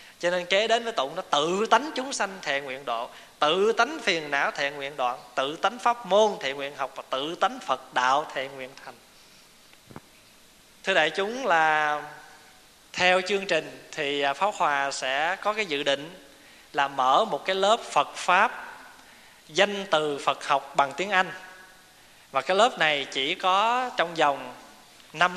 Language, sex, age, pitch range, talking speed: Vietnamese, male, 20-39, 140-195 Hz, 175 wpm